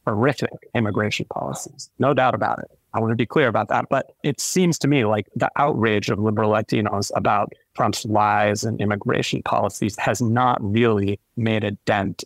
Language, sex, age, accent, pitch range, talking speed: English, male, 30-49, American, 105-125 Hz, 180 wpm